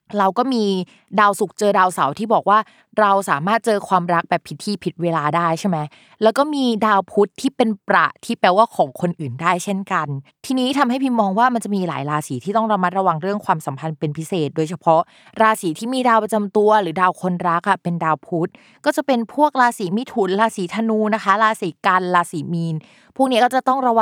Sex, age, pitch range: female, 20-39, 180-225 Hz